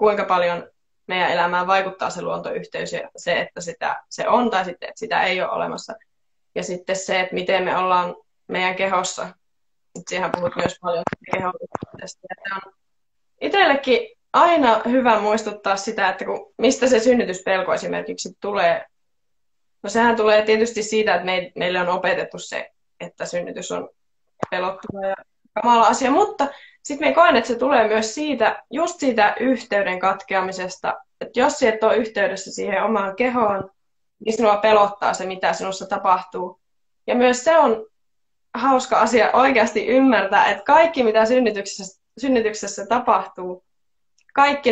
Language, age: Finnish, 20-39